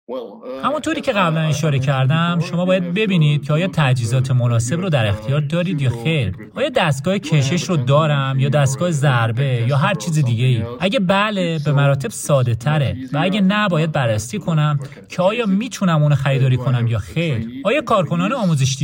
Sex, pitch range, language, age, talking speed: male, 130-180 Hz, Persian, 30-49, 175 wpm